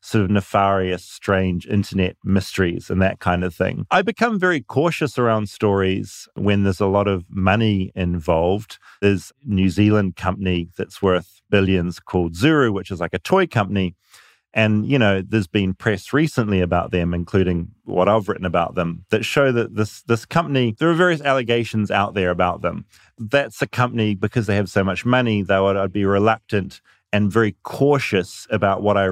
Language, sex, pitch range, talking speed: English, male, 95-115 Hz, 180 wpm